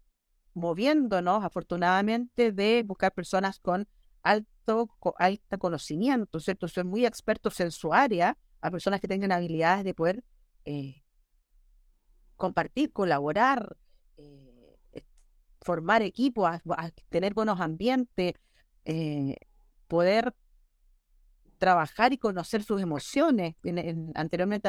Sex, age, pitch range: female, 40-59, 175-225 Hz